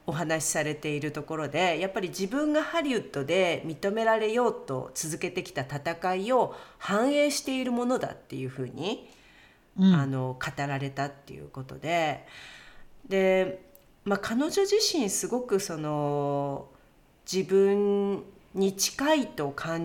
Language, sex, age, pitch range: Japanese, female, 40-59, 140-195 Hz